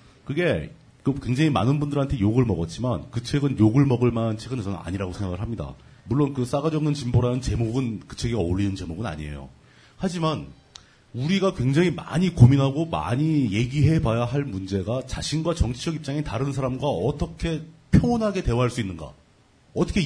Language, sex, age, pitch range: Korean, male, 40-59, 115-155 Hz